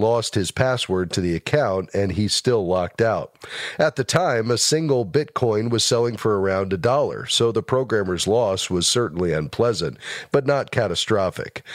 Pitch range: 105-130 Hz